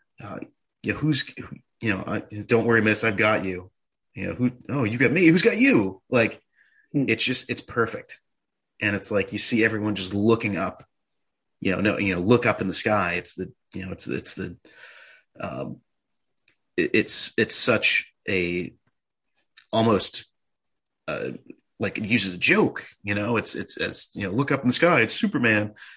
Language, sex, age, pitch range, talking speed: English, male, 30-49, 100-125 Hz, 185 wpm